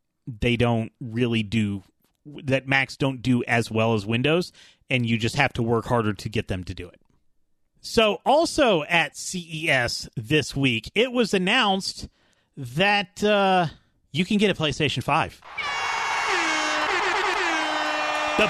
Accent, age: American, 30-49